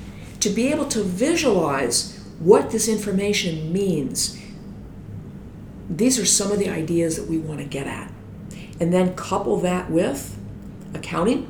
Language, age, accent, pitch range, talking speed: English, 50-69, American, 150-195 Hz, 140 wpm